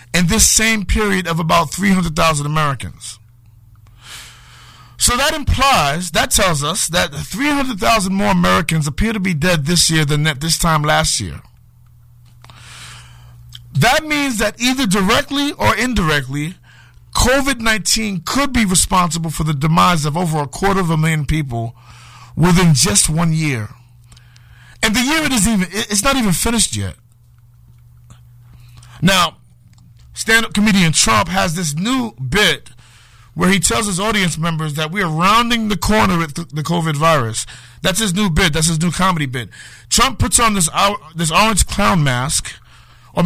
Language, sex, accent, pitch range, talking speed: English, male, American, 125-205 Hz, 150 wpm